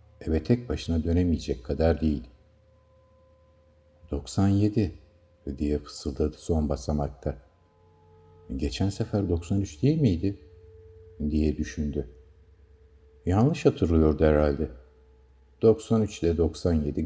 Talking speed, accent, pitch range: 85 wpm, native, 75-90 Hz